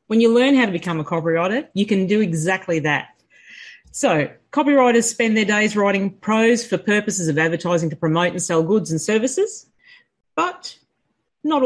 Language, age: English, 40-59